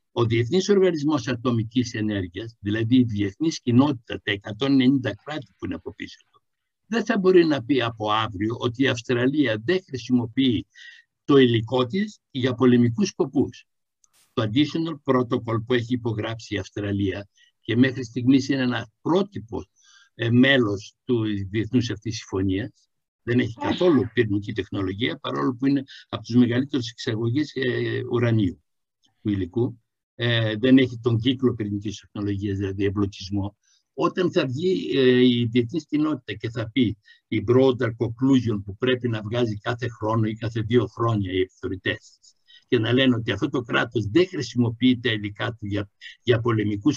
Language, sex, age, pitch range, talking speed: Greek, male, 60-79, 110-135 Hz, 150 wpm